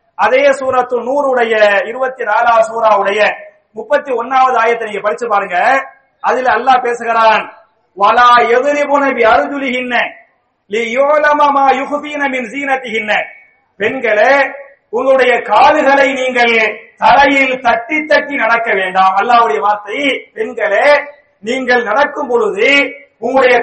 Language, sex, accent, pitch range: English, male, Indian, 230-290 Hz